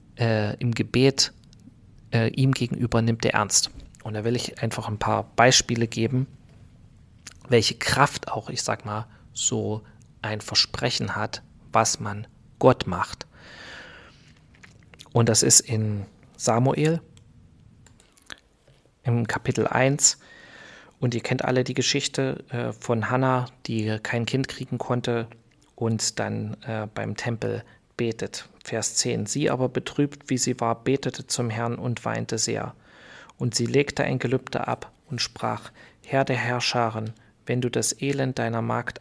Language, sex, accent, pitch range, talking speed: German, male, German, 110-125 Hz, 140 wpm